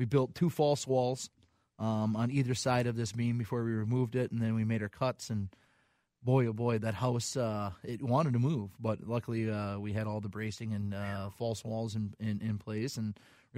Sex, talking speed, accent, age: male, 230 wpm, American, 30-49